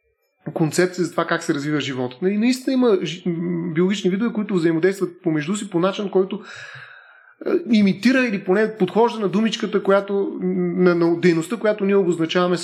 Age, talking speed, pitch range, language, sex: 30-49, 145 wpm, 170-210 Hz, Bulgarian, male